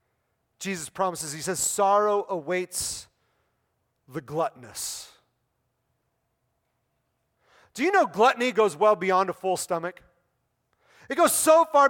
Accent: American